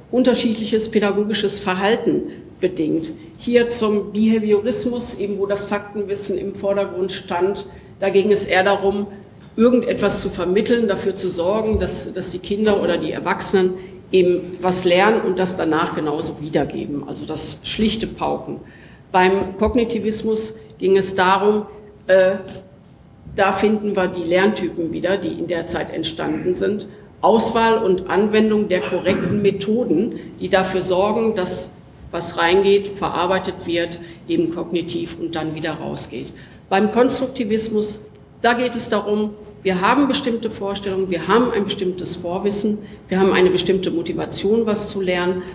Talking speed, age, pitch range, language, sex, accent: 140 wpm, 50-69, 180-215 Hz, German, female, German